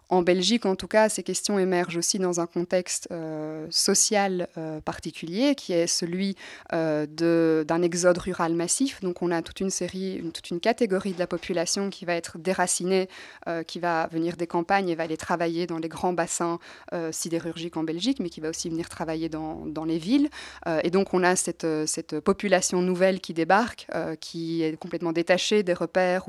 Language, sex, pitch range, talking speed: French, female, 165-195 Hz, 200 wpm